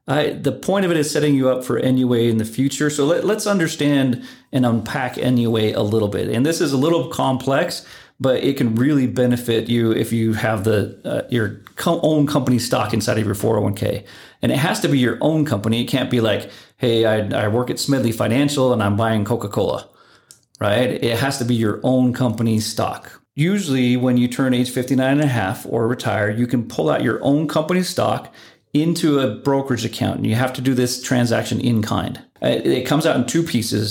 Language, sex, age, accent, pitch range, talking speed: English, male, 40-59, American, 115-135 Hz, 210 wpm